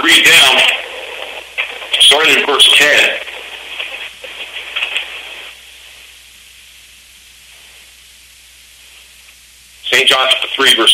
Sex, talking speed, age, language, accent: male, 55 wpm, 50-69, English, American